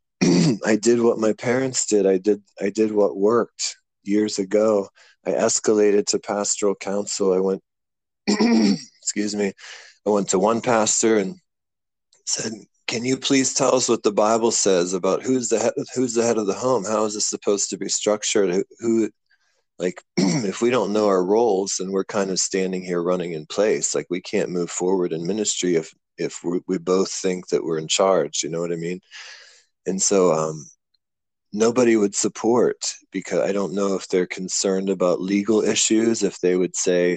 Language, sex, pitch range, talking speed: English, male, 90-110 Hz, 185 wpm